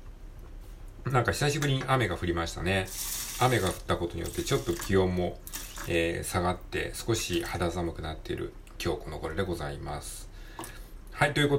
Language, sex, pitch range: Japanese, male, 85-125 Hz